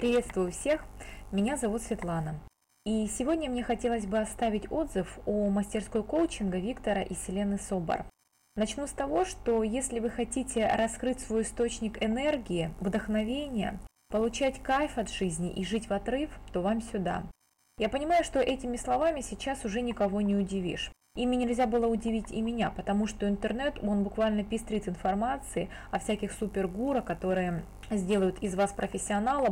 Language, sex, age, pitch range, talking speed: Russian, female, 20-39, 200-250 Hz, 150 wpm